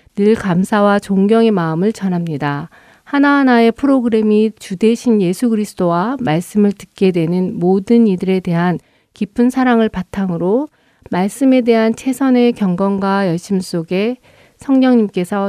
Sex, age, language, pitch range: female, 50-69, Korean, 180-225 Hz